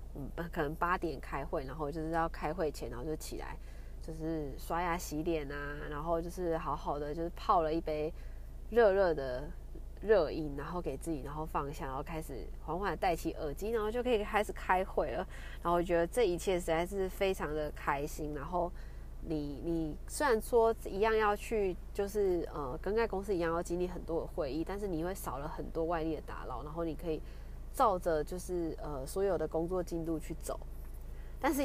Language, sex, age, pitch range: Chinese, female, 20-39, 150-185 Hz